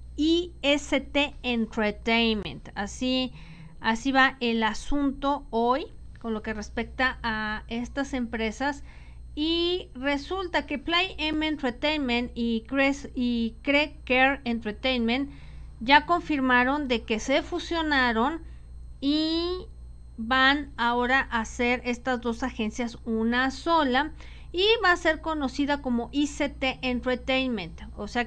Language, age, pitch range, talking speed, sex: Spanish, 40-59, 235-295 Hz, 115 wpm, female